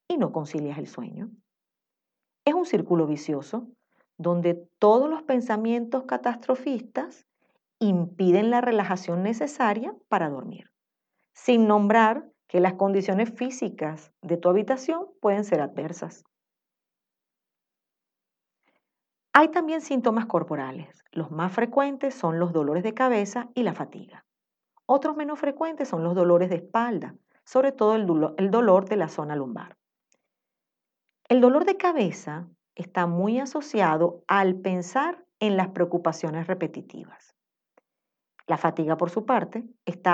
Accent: American